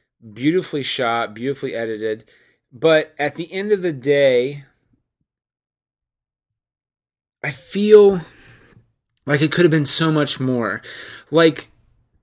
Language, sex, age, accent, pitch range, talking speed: English, male, 30-49, American, 125-160 Hz, 110 wpm